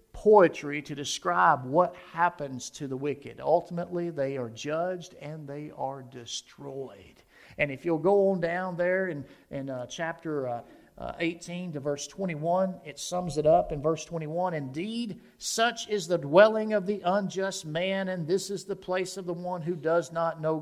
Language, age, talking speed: English, 50-69, 180 wpm